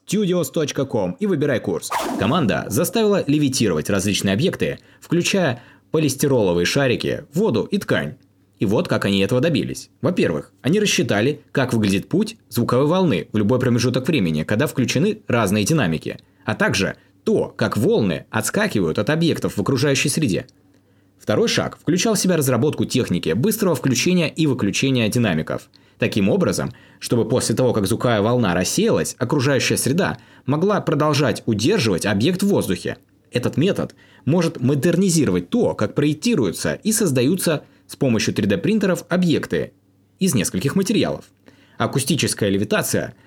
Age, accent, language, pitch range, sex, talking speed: 20-39, native, Russian, 115-170 Hz, male, 130 wpm